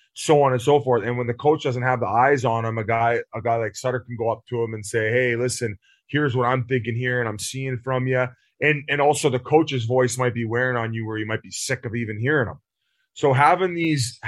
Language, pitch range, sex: English, 115-140 Hz, male